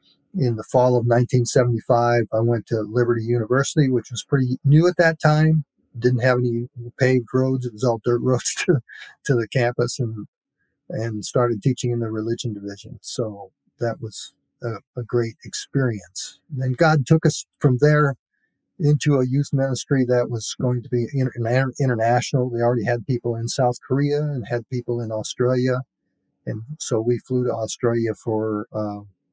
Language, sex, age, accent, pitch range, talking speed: English, male, 50-69, American, 110-130 Hz, 170 wpm